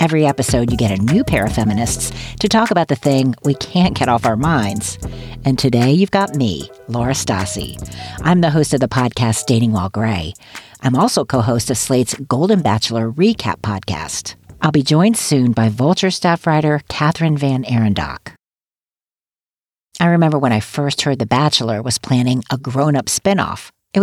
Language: English